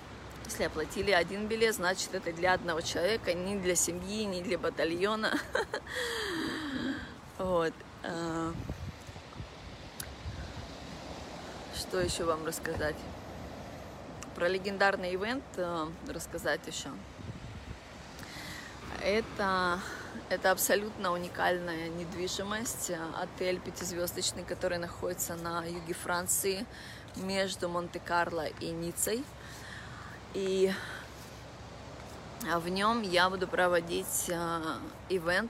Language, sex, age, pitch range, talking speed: Russian, female, 20-39, 170-190 Hz, 80 wpm